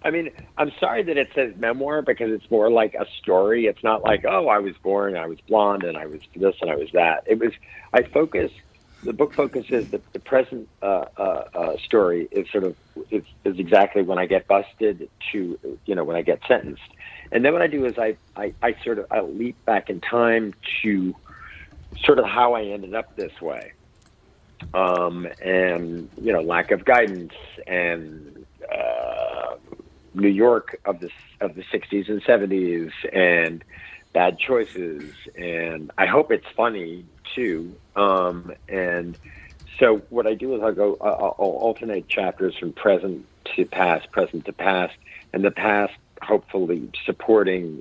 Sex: male